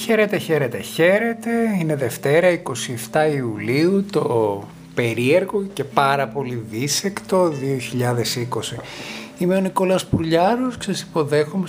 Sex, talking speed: male, 110 wpm